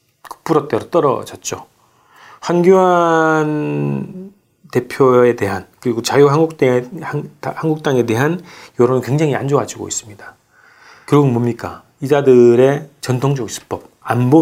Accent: native